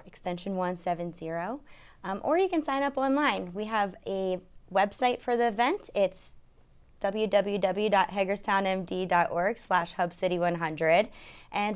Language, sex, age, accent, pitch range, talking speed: English, female, 20-39, American, 180-220 Hz, 105 wpm